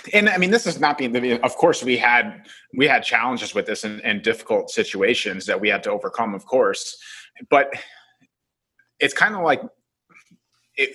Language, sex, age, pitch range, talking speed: English, male, 30-49, 120-165 Hz, 180 wpm